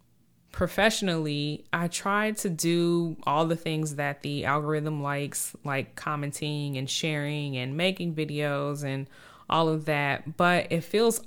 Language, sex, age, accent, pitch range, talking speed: English, female, 20-39, American, 145-170 Hz, 140 wpm